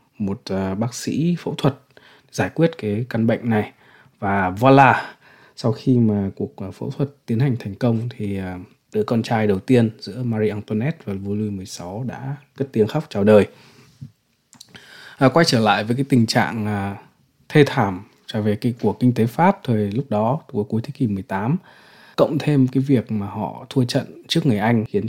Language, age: Vietnamese, 20-39